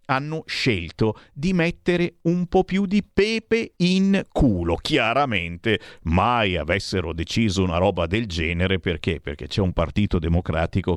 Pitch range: 95-145 Hz